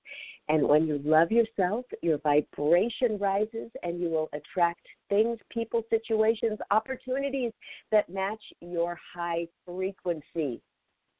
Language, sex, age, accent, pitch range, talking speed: English, female, 50-69, American, 165-230 Hz, 115 wpm